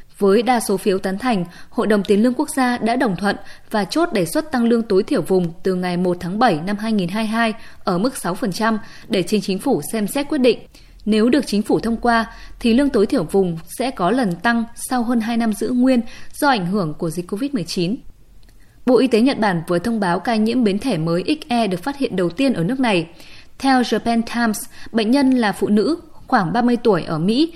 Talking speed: 225 wpm